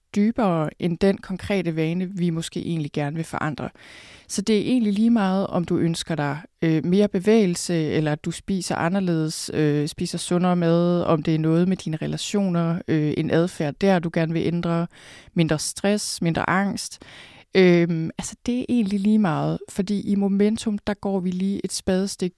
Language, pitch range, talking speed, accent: Danish, 165-200 Hz, 180 wpm, native